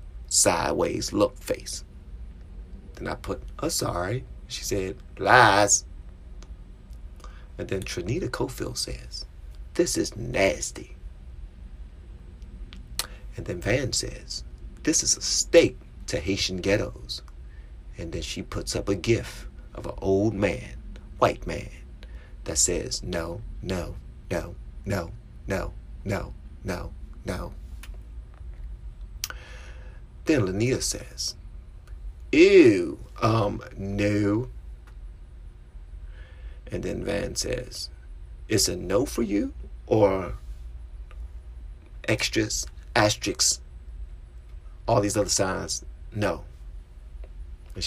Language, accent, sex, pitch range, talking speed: English, American, male, 65-95 Hz, 100 wpm